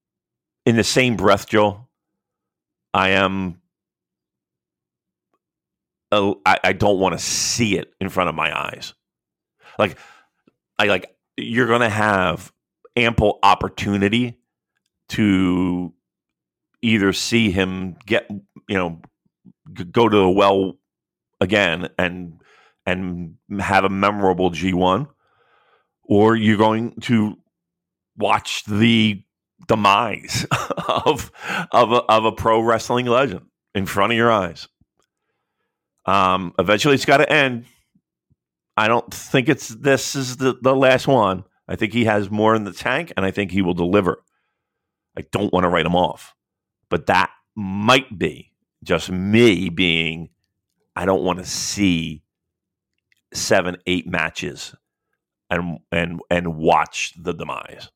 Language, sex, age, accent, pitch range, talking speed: English, male, 40-59, American, 90-110 Hz, 130 wpm